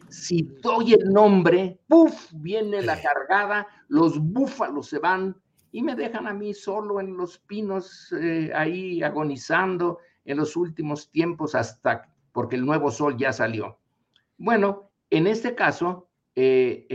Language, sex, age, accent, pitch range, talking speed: Spanish, male, 50-69, Mexican, 140-205 Hz, 140 wpm